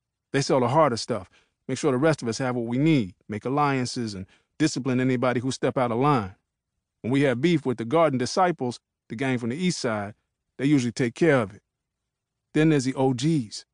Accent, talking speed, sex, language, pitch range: American, 215 wpm, male, English, 115-150 Hz